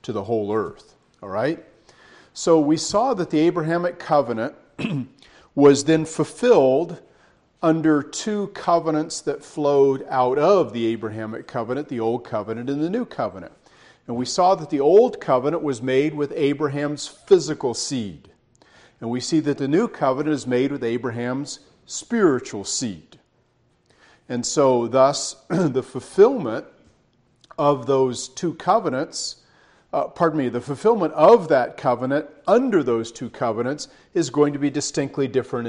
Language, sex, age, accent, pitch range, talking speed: English, male, 40-59, American, 120-155 Hz, 145 wpm